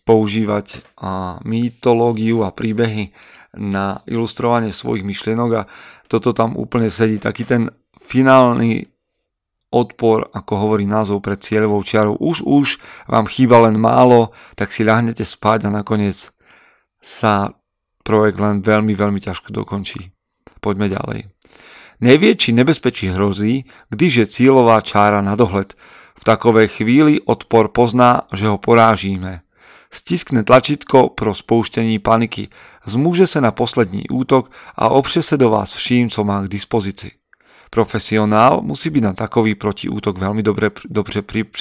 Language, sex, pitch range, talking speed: Slovak, male, 105-120 Hz, 130 wpm